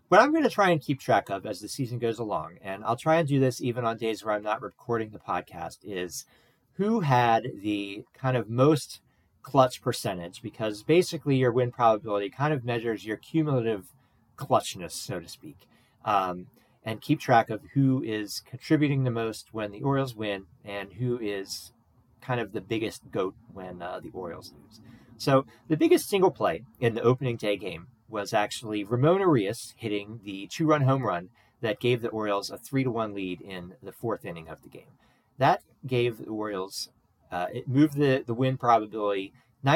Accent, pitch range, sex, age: American, 105-135 Hz, male, 40-59